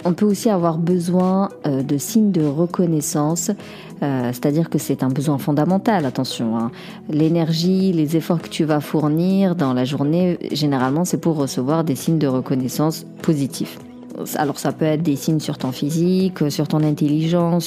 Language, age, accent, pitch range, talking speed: French, 40-59, French, 145-175 Hz, 165 wpm